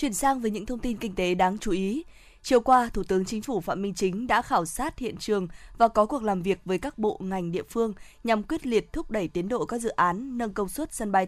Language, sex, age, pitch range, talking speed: Vietnamese, female, 20-39, 190-240 Hz, 270 wpm